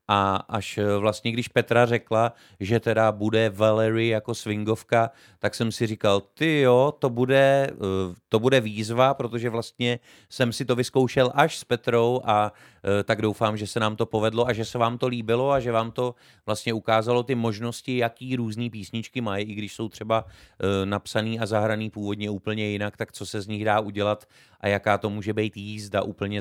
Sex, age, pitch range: male, 30-49, 105-125 Hz